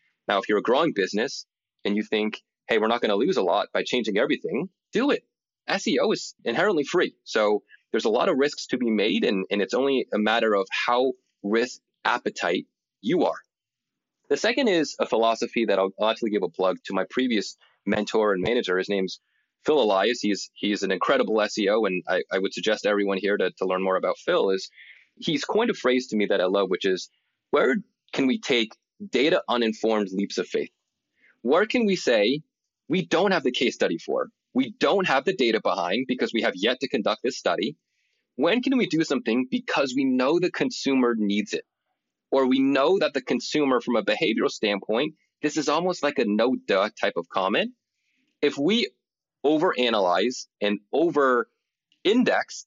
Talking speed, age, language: 195 wpm, 30-49, English